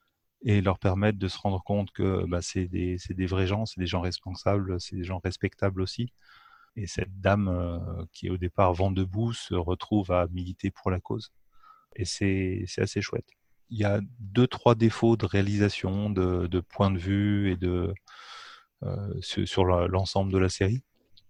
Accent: French